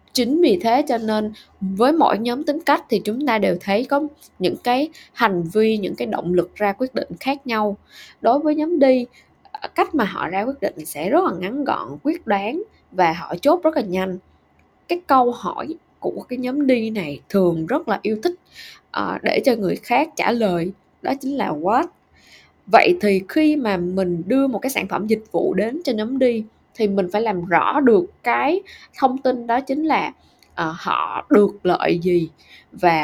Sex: female